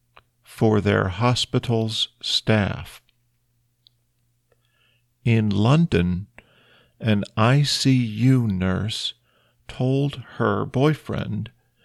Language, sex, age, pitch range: Thai, male, 50-69, 110-130 Hz